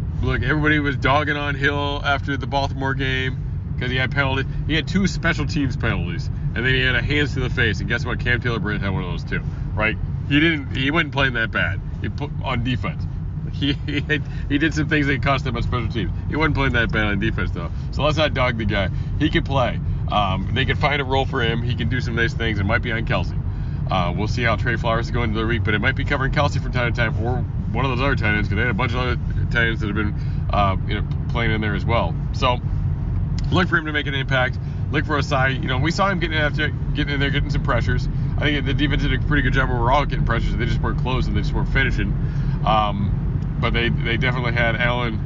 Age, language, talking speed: 40-59, English, 270 wpm